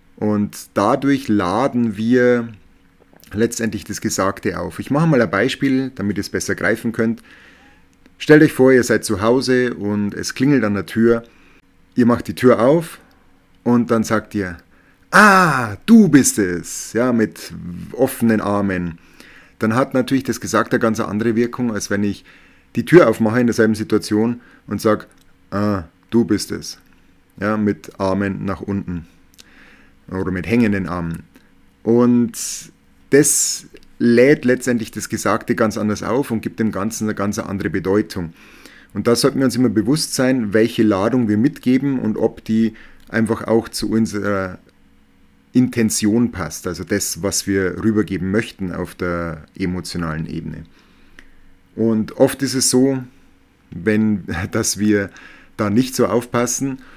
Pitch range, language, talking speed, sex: 95-120 Hz, German, 150 wpm, male